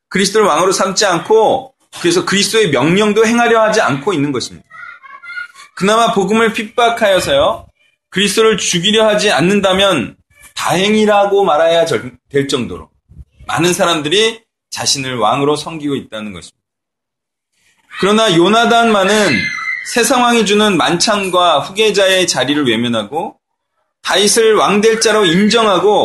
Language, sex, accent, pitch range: Korean, male, native, 175-225 Hz